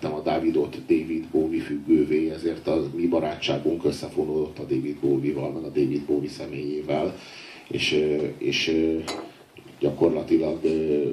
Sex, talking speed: male, 115 wpm